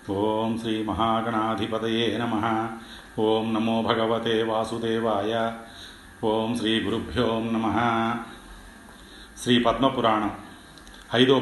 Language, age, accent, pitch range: Telugu, 40-59, native, 110-135 Hz